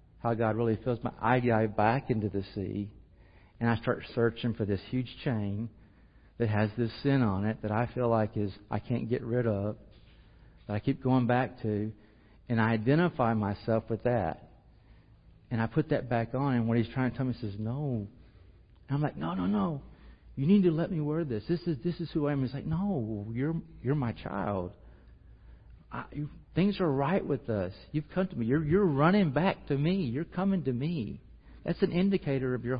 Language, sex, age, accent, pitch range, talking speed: English, male, 50-69, American, 105-150 Hz, 210 wpm